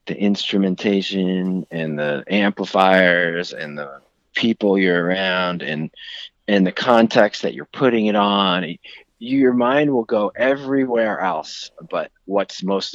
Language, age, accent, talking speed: English, 30-49, American, 130 wpm